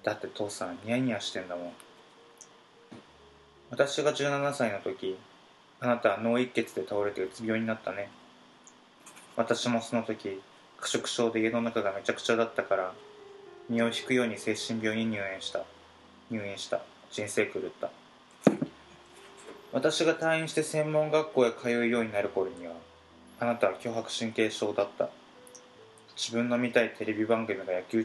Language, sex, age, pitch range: Japanese, male, 20-39, 95-120 Hz